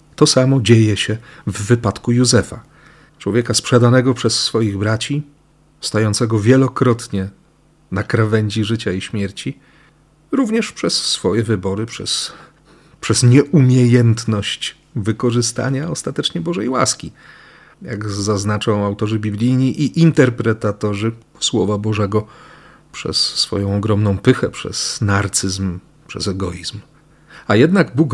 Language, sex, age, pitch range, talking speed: Polish, male, 40-59, 105-135 Hz, 105 wpm